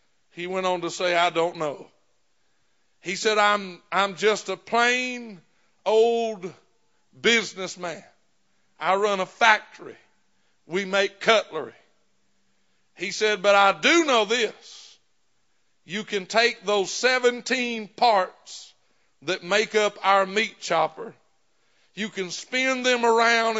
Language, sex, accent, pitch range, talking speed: English, male, American, 185-230 Hz, 120 wpm